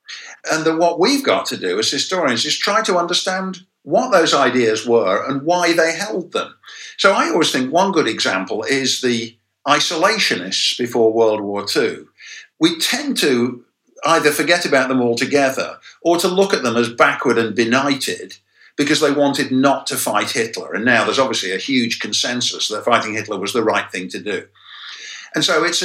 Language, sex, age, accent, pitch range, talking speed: English, male, 50-69, British, 125-185 Hz, 185 wpm